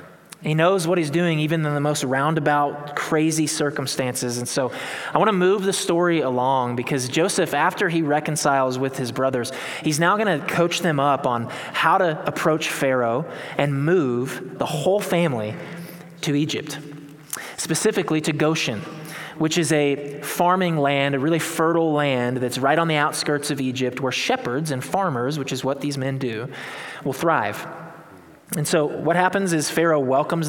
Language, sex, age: English, male, 20-39